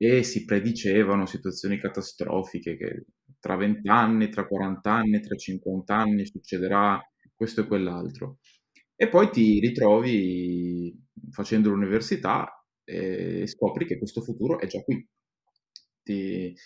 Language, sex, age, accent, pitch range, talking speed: Italian, male, 20-39, native, 95-120 Hz, 120 wpm